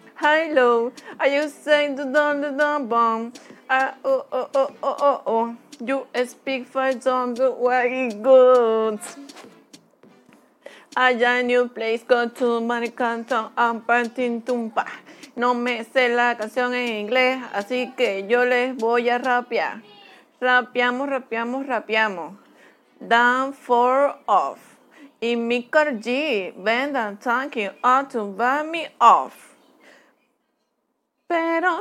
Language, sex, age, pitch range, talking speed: English, female, 30-49, 240-310 Hz, 120 wpm